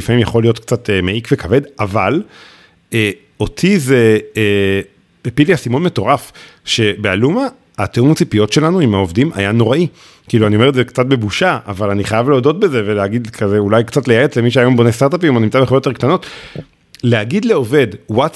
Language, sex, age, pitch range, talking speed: English, male, 40-59, 110-145 Hz, 135 wpm